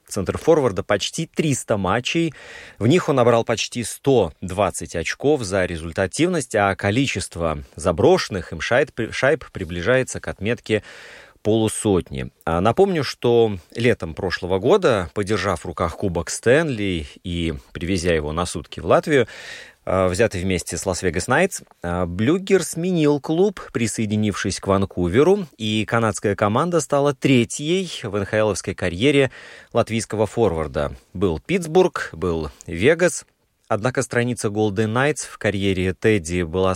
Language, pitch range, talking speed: Russian, 90-120 Hz, 120 wpm